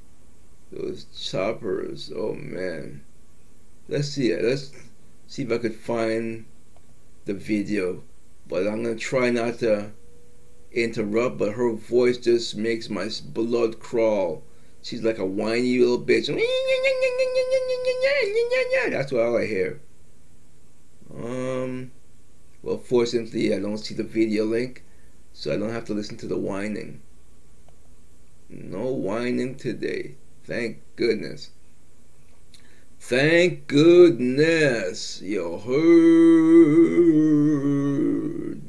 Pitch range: 105-140 Hz